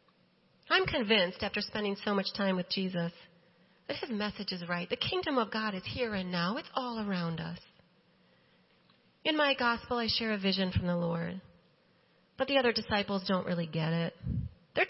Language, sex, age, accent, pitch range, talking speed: English, female, 30-49, American, 175-240 Hz, 180 wpm